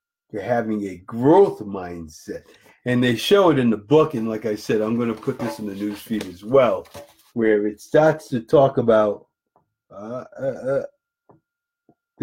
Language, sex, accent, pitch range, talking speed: English, male, American, 105-140 Hz, 160 wpm